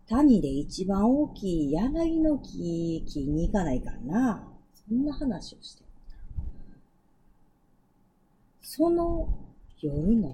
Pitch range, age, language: 170-270 Hz, 40-59, Japanese